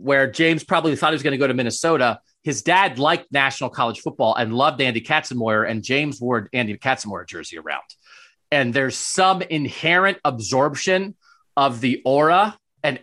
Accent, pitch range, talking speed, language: American, 120-165 Hz, 170 wpm, English